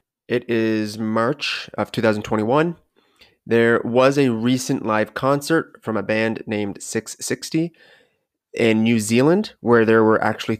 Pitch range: 110-130 Hz